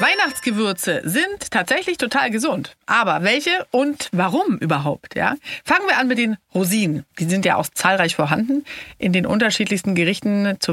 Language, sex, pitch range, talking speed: German, female, 165-225 Hz, 155 wpm